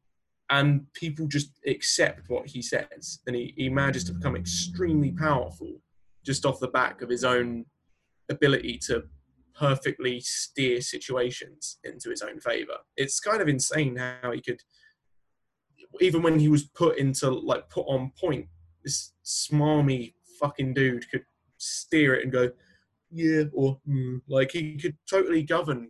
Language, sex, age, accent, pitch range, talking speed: English, male, 20-39, British, 130-160 Hz, 150 wpm